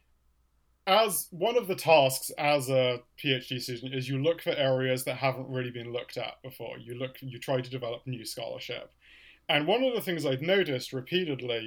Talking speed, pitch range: 195 wpm, 125-145 Hz